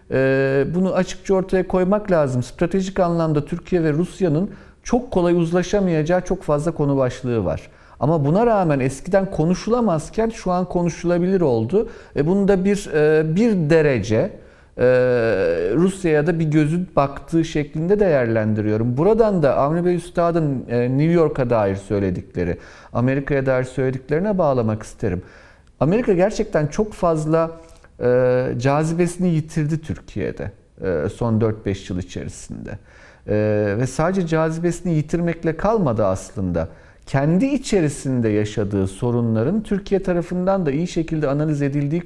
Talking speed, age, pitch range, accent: 115 wpm, 40-59, 125-185 Hz, native